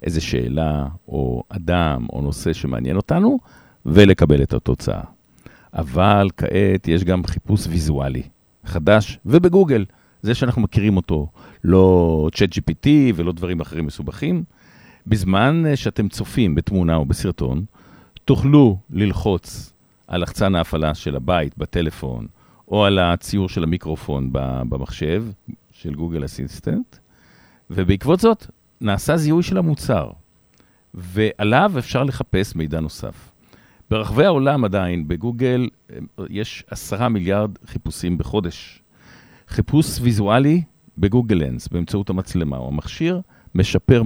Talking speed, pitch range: 110 wpm, 80-115 Hz